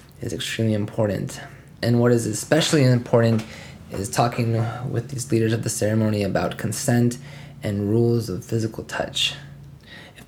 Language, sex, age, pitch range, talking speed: English, male, 20-39, 110-125 Hz, 140 wpm